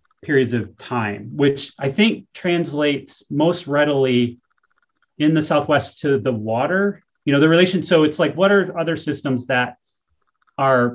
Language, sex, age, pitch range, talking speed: English, male, 30-49, 130-180 Hz, 155 wpm